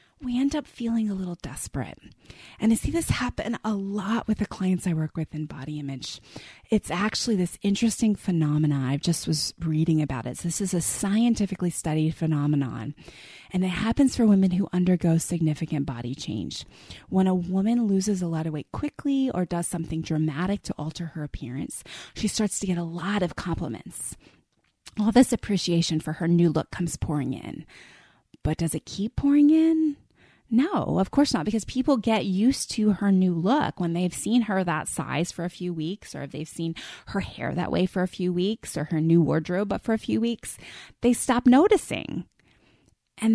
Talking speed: 190 wpm